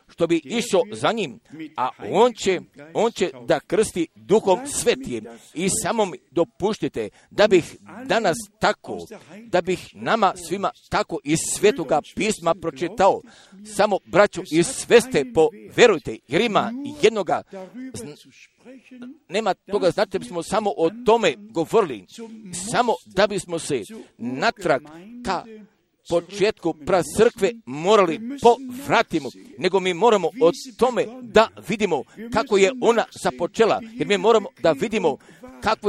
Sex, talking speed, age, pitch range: male, 125 wpm, 50-69, 175-225 Hz